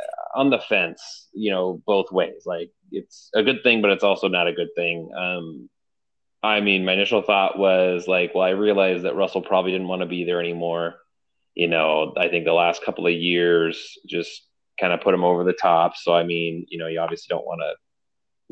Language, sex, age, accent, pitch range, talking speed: English, male, 30-49, American, 85-105 Hz, 215 wpm